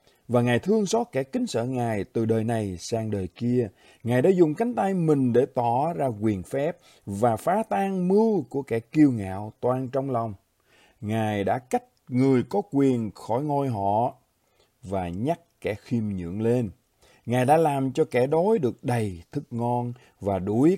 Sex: male